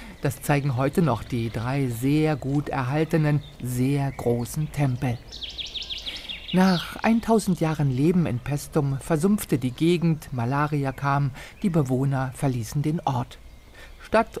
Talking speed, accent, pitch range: 120 wpm, German, 130-160 Hz